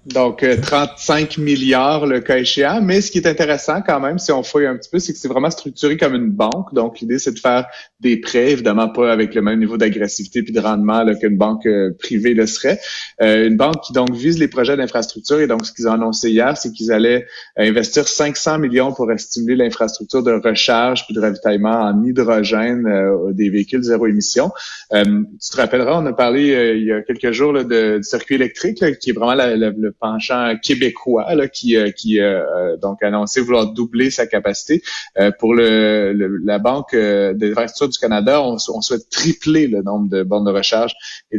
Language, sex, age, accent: French, male, 30-49, Canadian